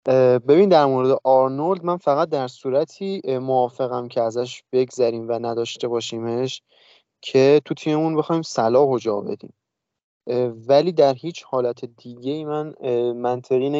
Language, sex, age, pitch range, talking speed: Persian, male, 30-49, 115-135 Hz, 125 wpm